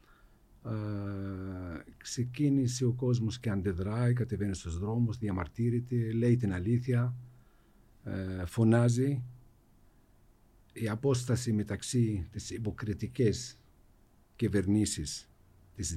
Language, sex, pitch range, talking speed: Greek, male, 95-120 Hz, 85 wpm